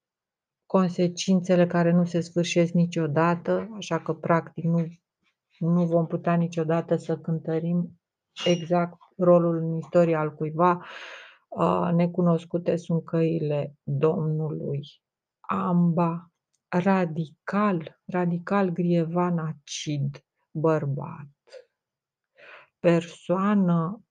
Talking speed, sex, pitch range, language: 80 wpm, female, 160-180 Hz, Romanian